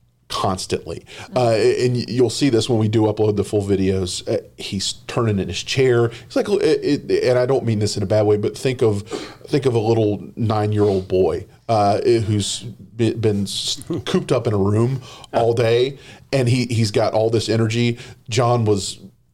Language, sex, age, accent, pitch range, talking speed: English, male, 40-59, American, 105-120 Hz, 185 wpm